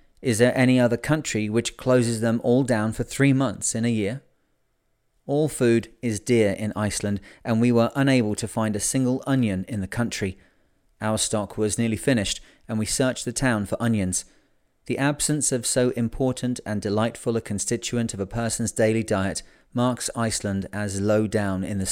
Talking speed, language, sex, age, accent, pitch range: 185 wpm, English, male, 30-49, British, 100-120 Hz